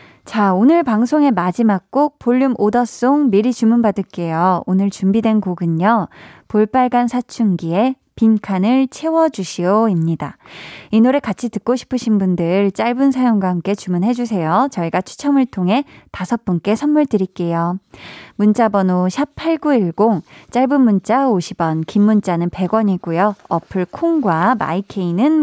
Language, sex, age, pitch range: Korean, female, 20-39, 190-255 Hz